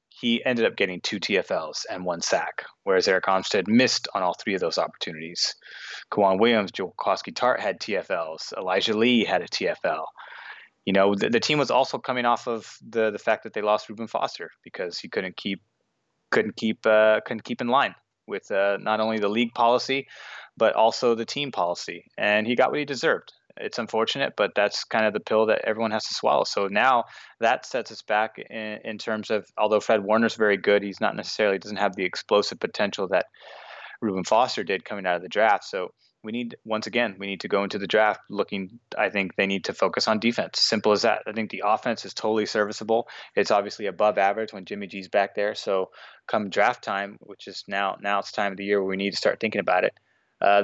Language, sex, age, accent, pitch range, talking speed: English, male, 20-39, American, 100-115 Hz, 220 wpm